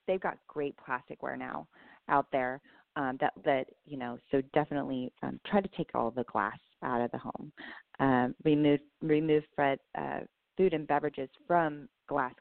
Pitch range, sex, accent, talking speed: 135-155 Hz, female, American, 175 wpm